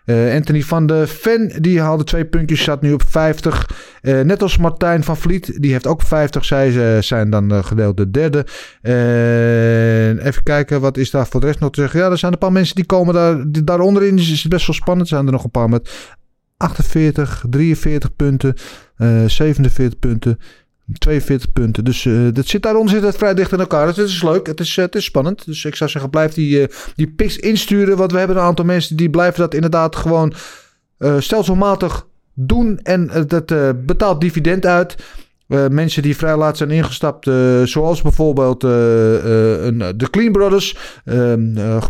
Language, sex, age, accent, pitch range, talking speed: Dutch, male, 30-49, Dutch, 130-175 Hz, 210 wpm